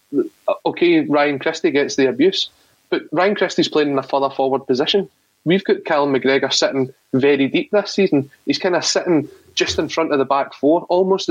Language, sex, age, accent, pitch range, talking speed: English, male, 30-49, British, 135-190 Hz, 190 wpm